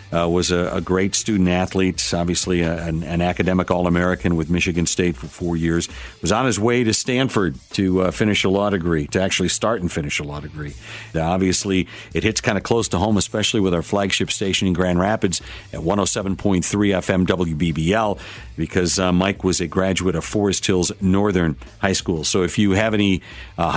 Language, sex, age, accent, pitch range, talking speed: English, male, 50-69, American, 90-110 Hz, 190 wpm